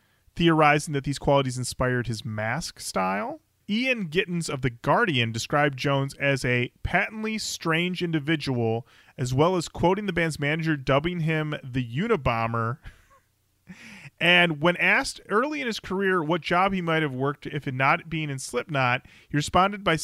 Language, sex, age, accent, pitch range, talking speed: English, male, 30-49, American, 125-175 Hz, 155 wpm